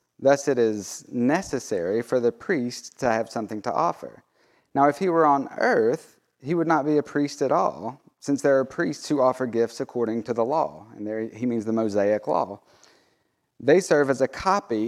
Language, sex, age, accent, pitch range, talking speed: English, male, 30-49, American, 110-140 Hz, 200 wpm